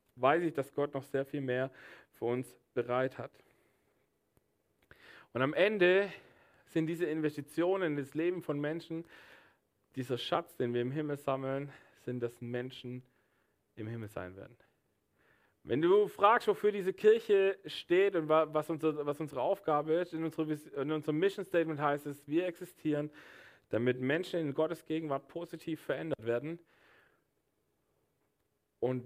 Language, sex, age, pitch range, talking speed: German, male, 40-59, 125-160 Hz, 140 wpm